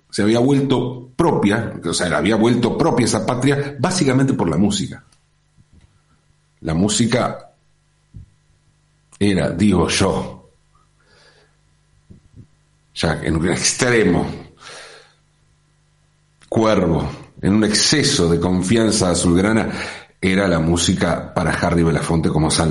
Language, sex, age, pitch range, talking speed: Spanish, male, 50-69, 95-150 Hz, 105 wpm